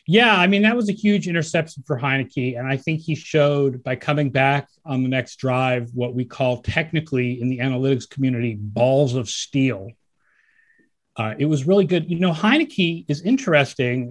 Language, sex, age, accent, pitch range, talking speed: English, male, 30-49, American, 125-165 Hz, 185 wpm